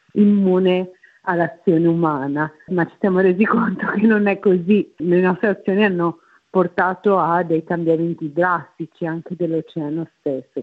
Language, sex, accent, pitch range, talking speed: Italian, female, native, 165-200 Hz, 135 wpm